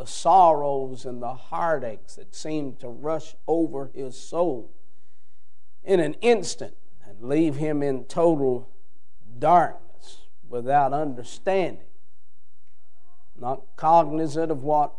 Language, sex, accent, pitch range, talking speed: English, male, American, 155-225 Hz, 110 wpm